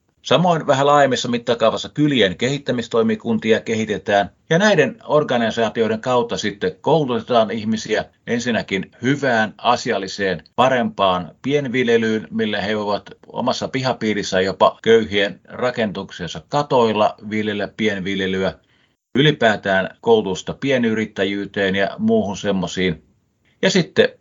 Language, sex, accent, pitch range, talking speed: Finnish, male, native, 95-120 Hz, 95 wpm